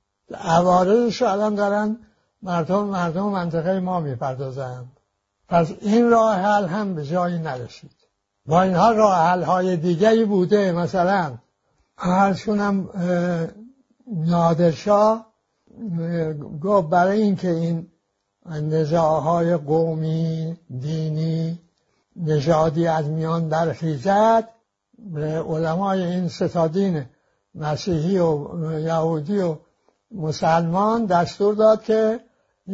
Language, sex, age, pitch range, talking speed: English, male, 60-79, 160-205 Hz, 95 wpm